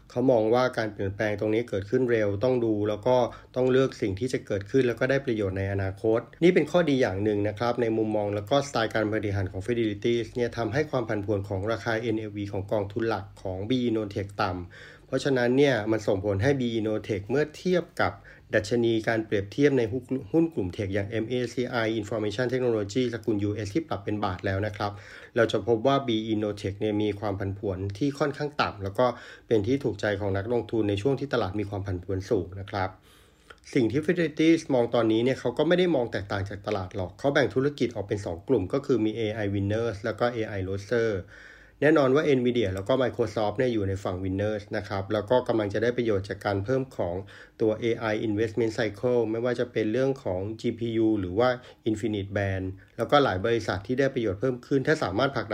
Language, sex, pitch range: Thai, male, 100-125 Hz